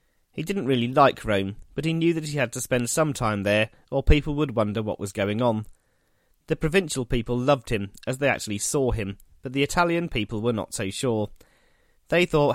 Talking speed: 210 wpm